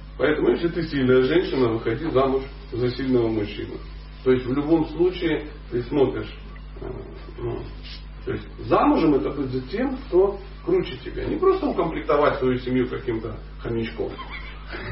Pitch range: 115-175 Hz